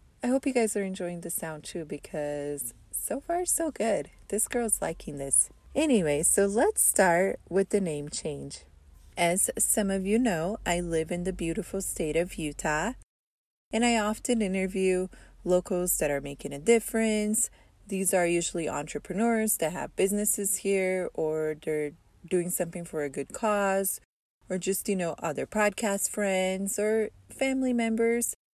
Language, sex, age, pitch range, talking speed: English, female, 20-39, 155-220 Hz, 160 wpm